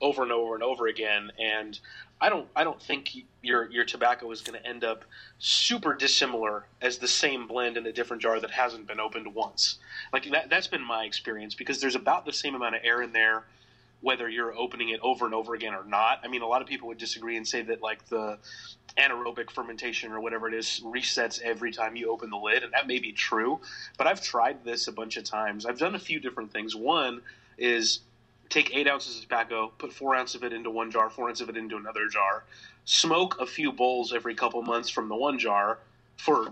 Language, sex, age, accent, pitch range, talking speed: English, male, 30-49, American, 110-120 Hz, 230 wpm